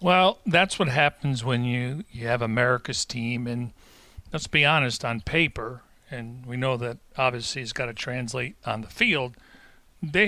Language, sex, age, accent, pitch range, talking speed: English, male, 40-59, American, 120-145 Hz, 170 wpm